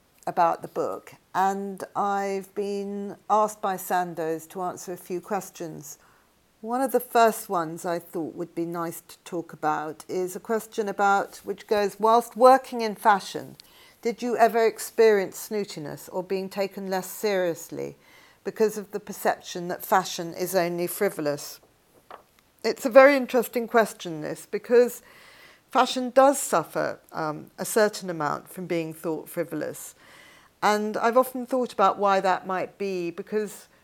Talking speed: 150 wpm